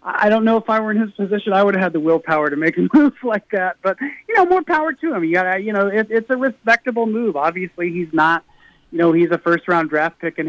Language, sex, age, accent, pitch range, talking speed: English, male, 40-59, American, 160-215 Hz, 280 wpm